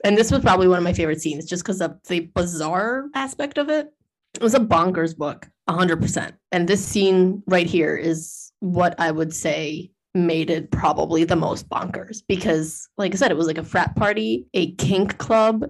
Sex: female